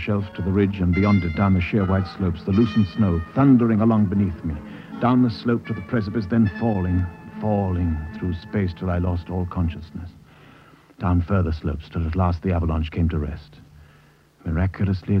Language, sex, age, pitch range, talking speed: English, male, 60-79, 85-100 Hz, 185 wpm